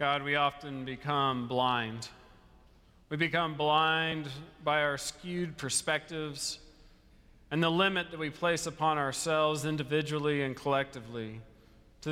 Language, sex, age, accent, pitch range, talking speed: English, male, 40-59, American, 125-165 Hz, 120 wpm